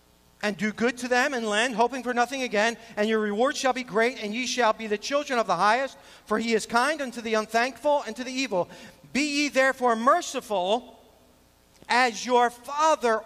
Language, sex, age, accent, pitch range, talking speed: English, male, 40-59, American, 160-240 Hz, 200 wpm